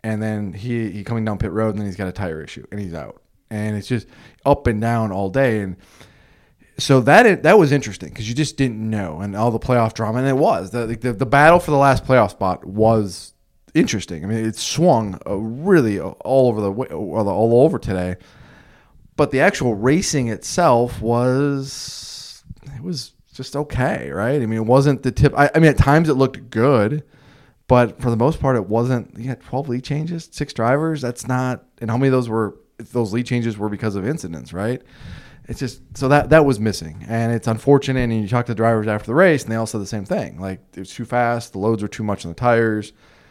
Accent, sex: American, male